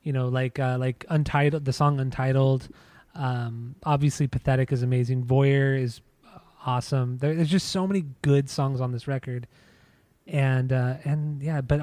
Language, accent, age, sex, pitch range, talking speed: English, American, 20-39, male, 130-155 Hz, 160 wpm